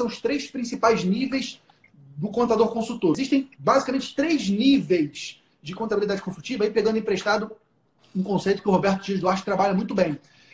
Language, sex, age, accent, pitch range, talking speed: Portuguese, male, 30-49, Brazilian, 195-245 Hz, 155 wpm